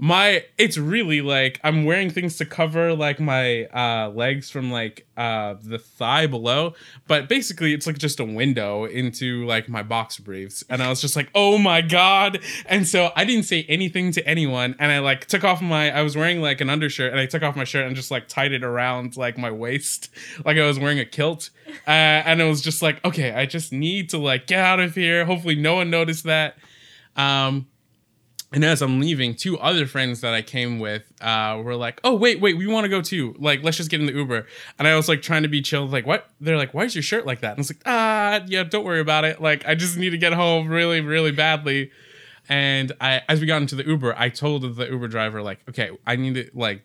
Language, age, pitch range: English, 20-39, 125-165 Hz